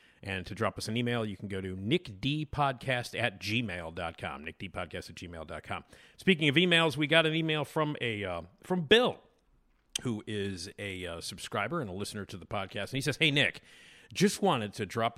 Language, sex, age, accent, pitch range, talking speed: English, male, 40-59, American, 95-125 Hz, 180 wpm